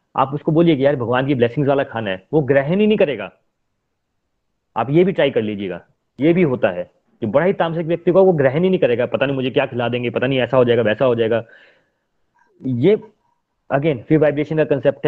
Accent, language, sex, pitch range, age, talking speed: native, Hindi, male, 125-165 Hz, 30-49, 175 wpm